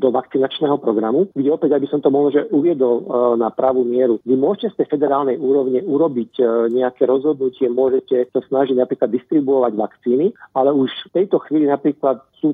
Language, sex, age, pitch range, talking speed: Slovak, male, 50-69, 125-145 Hz, 170 wpm